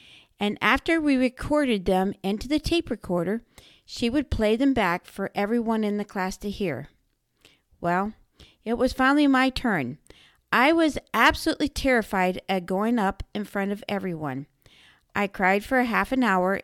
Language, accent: English, American